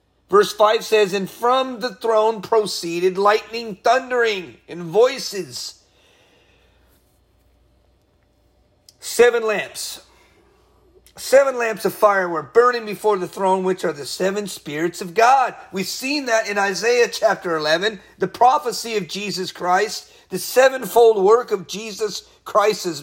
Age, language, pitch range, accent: 40-59, English, 180-245 Hz, American